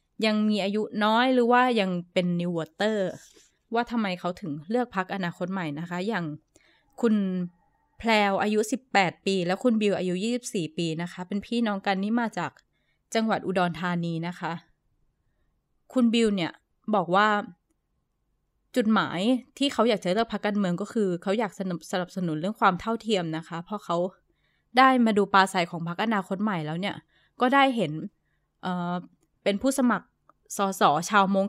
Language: Thai